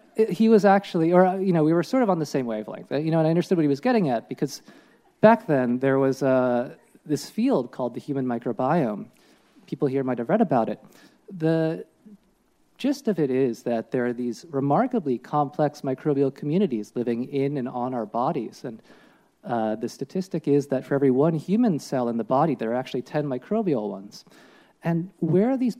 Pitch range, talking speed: 125-180 Hz, 200 wpm